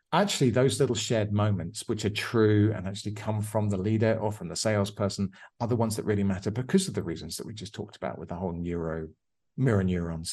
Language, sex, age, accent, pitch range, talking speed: English, male, 40-59, British, 95-115 Hz, 225 wpm